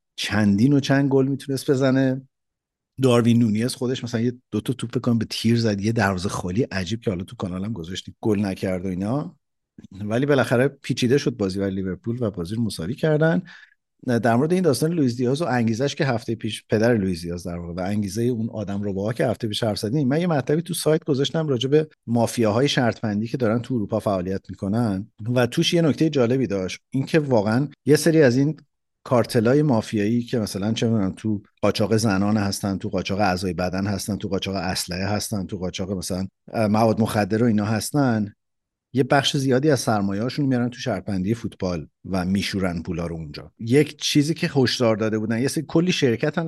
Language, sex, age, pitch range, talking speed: Persian, male, 50-69, 100-135 Hz, 190 wpm